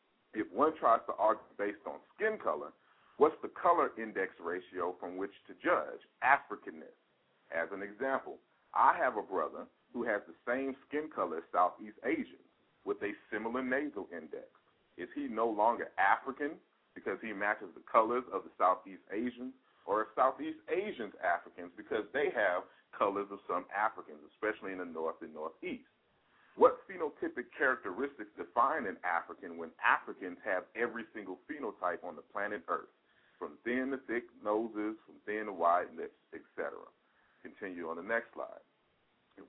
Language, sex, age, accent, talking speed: English, male, 40-59, American, 160 wpm